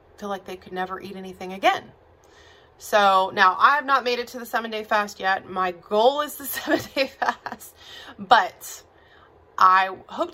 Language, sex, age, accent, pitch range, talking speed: English, female, 20-39, American, 185-245 Hz, 175 wpm